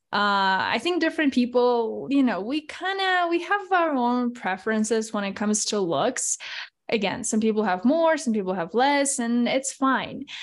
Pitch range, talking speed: 200-245 Hz, 185 wpm